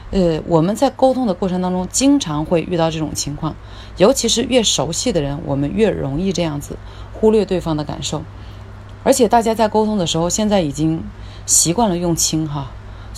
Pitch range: 140-185 Hz